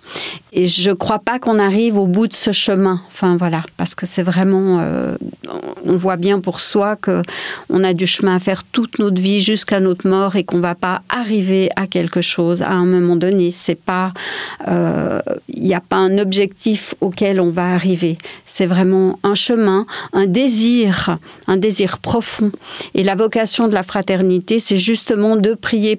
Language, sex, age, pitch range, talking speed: French, female, 50-69, 185-220 Hz, 190 wpm